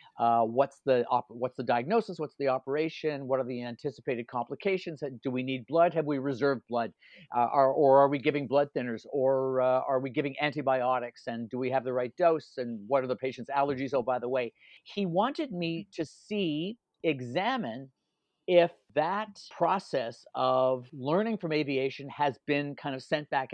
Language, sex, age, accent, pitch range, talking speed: English, male, 50-69, American, 135-180 Hz, 185 wpm